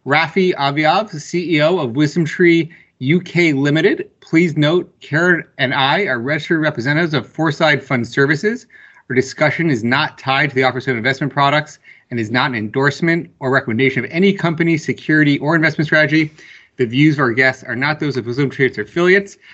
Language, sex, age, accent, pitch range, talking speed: English, male, 30-49, American, 140-170 Hz, 170 wpm